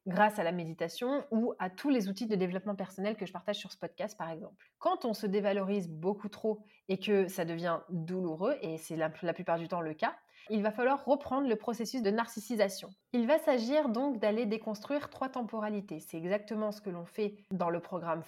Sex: female